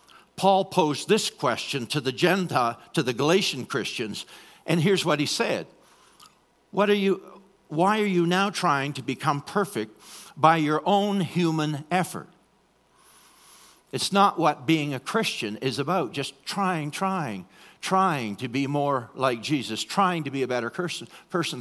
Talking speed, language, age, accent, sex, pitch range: 155 wpm, English, 60-79, American, male, 135-190 Hz